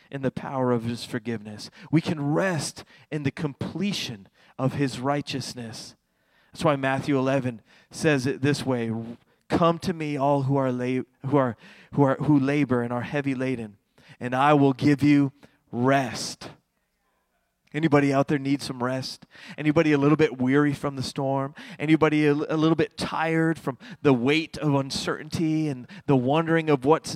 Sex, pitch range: male, 140-170 Hz